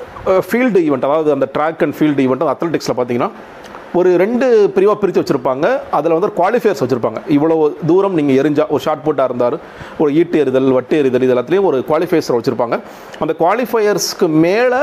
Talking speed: 160 wpm